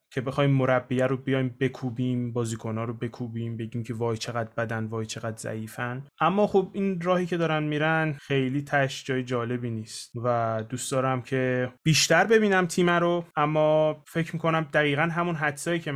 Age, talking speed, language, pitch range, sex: 20-39, 165 wpm, Persian, 130-165 Hz, male